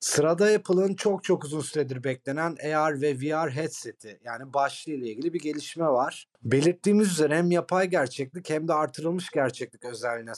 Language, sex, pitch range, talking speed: Turkish, male, 130-175 Hz, 160 wpm